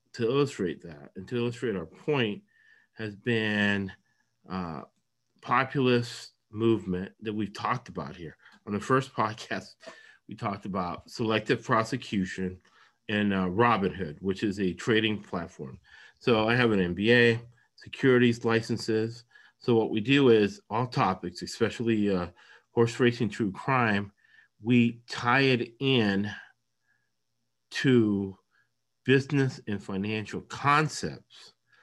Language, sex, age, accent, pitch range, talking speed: English, male, 40-59, American, 100-120 Hz, 120 wpm